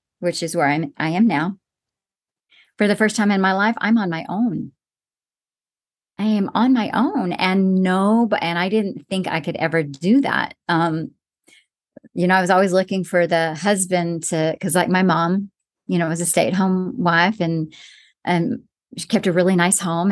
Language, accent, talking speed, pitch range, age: English, American, 195 wpm, 175-215 Hz, 40-59